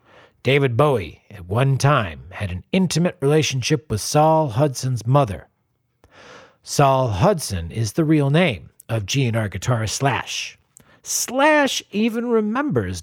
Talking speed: 120 wpm